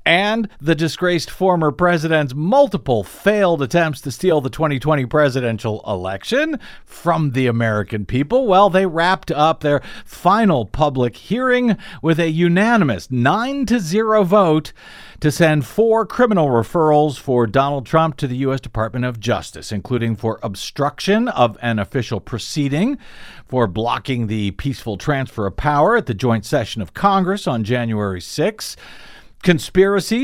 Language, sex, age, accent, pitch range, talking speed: English, male, 50-69, American, 125-185 Hz, 140 wpm